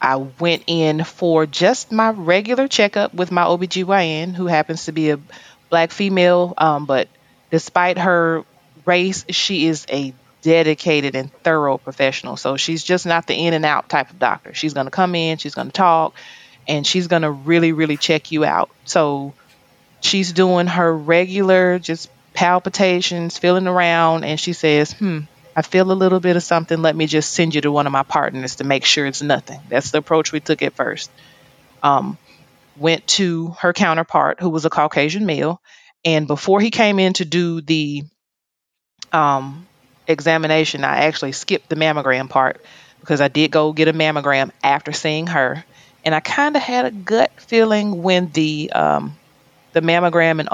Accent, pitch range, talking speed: American, 150-180 Hz, 180 wpm